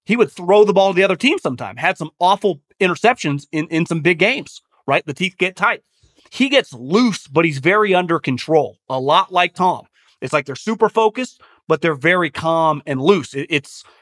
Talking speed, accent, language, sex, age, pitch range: 205 wpm, American, English, male, 30-49, 150-200 Hz